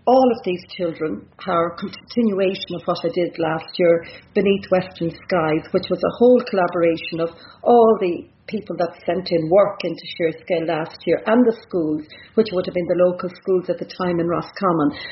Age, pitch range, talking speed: 40-59, 170-200 Hz, 190 wpm